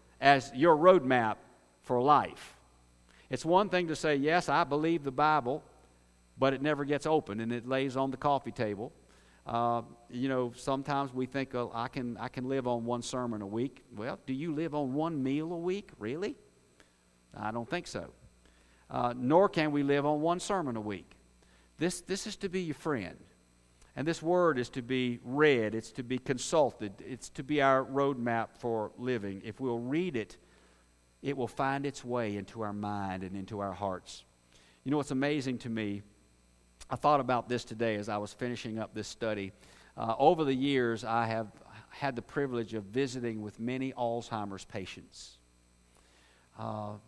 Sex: male